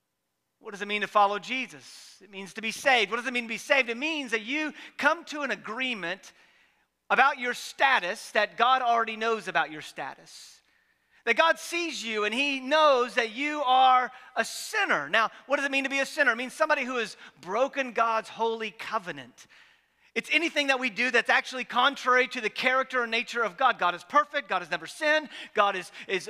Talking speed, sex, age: 210 wpm, male, 40-59